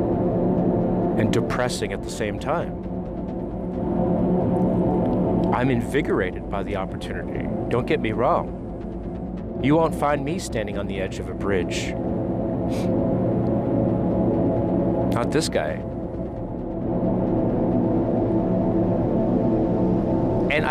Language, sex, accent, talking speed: English, male, American, 85 wpm